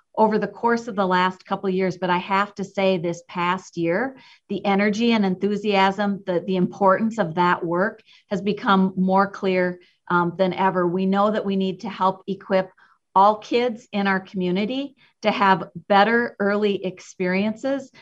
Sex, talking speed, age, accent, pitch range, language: female, 175 wpm, 40-59, American, 185-215 Hz, English